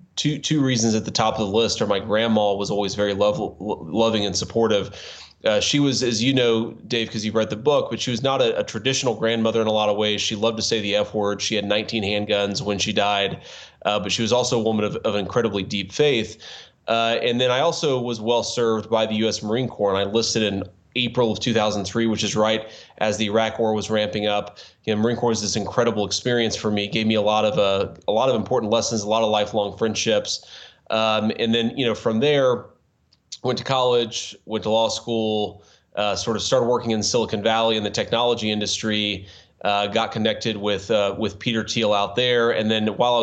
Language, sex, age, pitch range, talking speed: English, male, 20-39, 105-115 Hz, 230 wpm